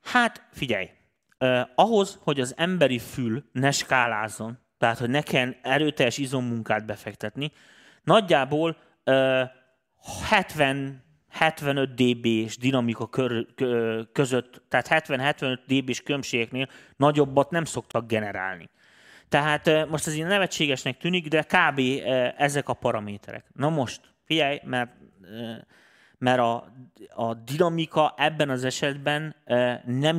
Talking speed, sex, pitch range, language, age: 120 wpm, male, 120-150 Hz, Hungarian, 30-49